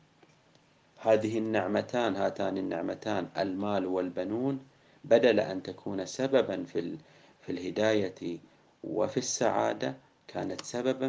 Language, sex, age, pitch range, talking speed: Arabic, male, 40-59, 95-125 Hz, 90 wpm